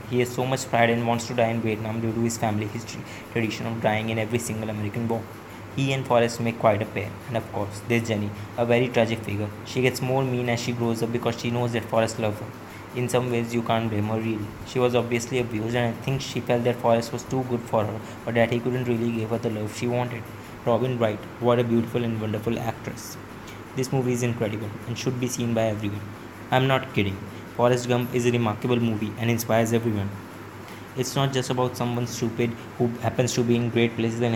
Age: 20-39